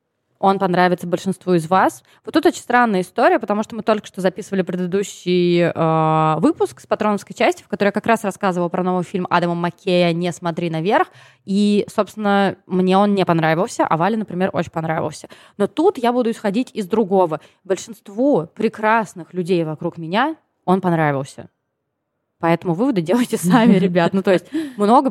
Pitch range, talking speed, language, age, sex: 175-235 Hz, 165 wpm, Russian, 20-39, female